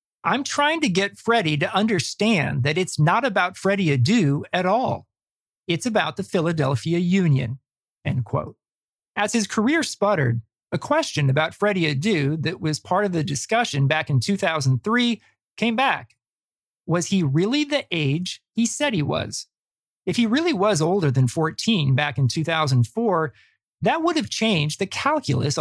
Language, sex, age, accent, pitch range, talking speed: English, male, 40-59, American, 145-215 Hz, 155 wpm